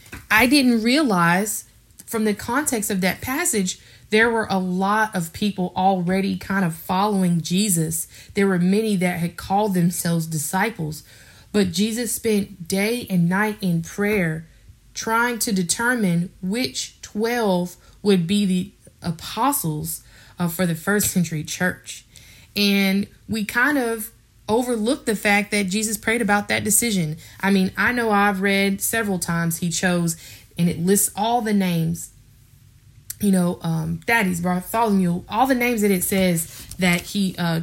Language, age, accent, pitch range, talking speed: English, 20-39, American, 160-210 Hz, 150 wpm